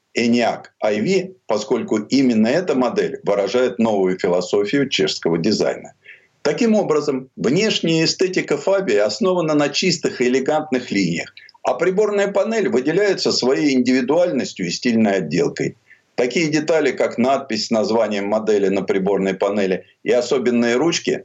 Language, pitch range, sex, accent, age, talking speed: Russian, 115-165 Hz, male, native, 50-69, 120 wpm